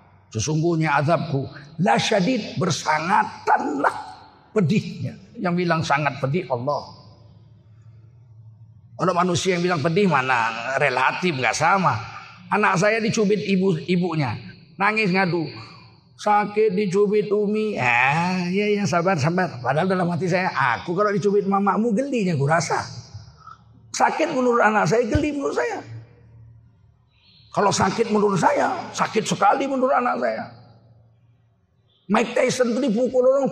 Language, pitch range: Indonesian, 150-215 Hz